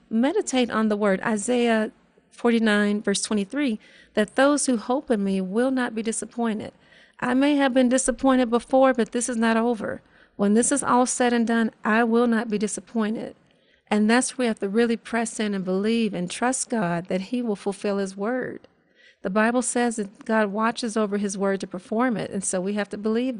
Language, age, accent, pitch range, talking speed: English, 40-59, American, 200-245 Hz, 205 wpm